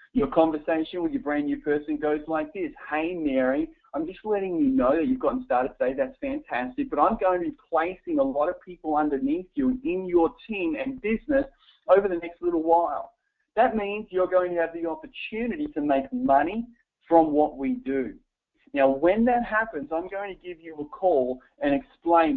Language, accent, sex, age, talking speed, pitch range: English, Australian, male, 40-59, 200 wpm, 160-265 Hz